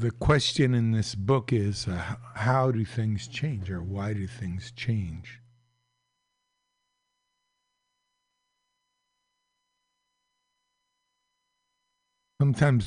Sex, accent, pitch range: male, American, 110-150 Hz